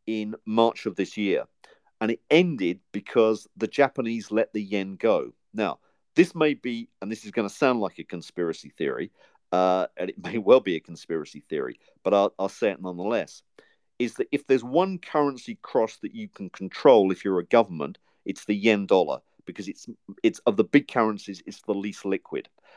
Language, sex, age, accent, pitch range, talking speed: English, male, 50-69, British, 100-125 Hz, 195 wpm